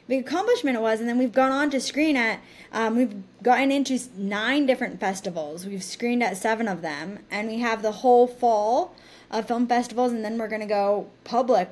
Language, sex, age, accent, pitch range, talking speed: English, female, 10-29, American, 195-240 Hz, 210 wpm